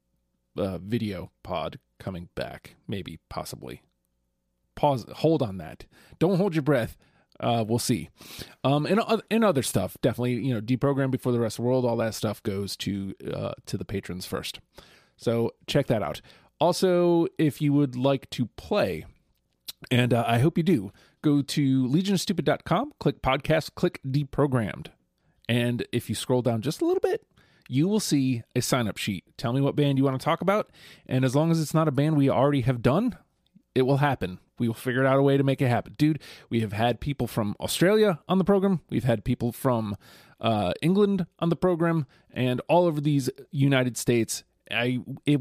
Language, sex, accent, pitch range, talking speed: English, male, American, 115-155 Hz, 190 wpm